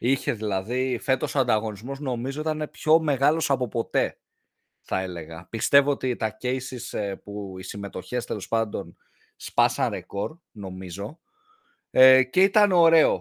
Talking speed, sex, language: 130 wpm, male, Greek